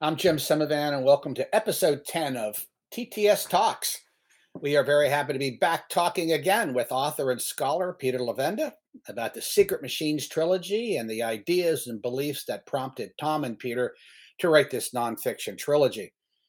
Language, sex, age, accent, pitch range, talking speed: English, male, 50-69, American, 120-170 Hz, 165 wpm